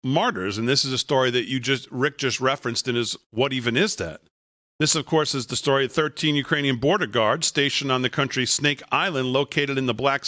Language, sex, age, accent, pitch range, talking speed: English, male, 40-59, American, 125-145 Hz, 230 wpm